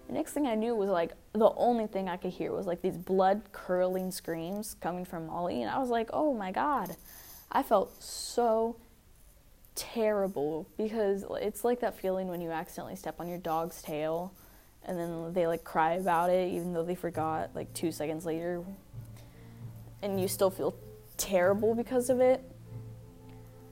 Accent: American